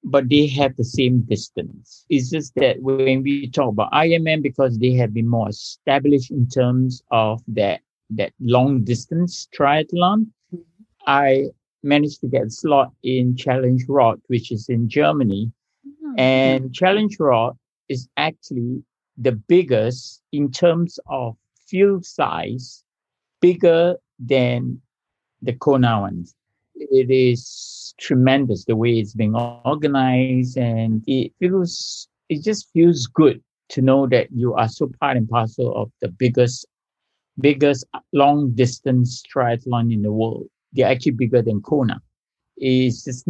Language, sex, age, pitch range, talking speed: English, male, 50-69, 120-145 Hz, 135 wpm